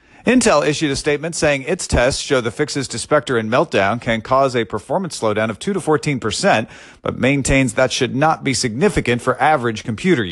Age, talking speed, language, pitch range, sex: 40-59, 185 wpm, English, 105-145 Hz, male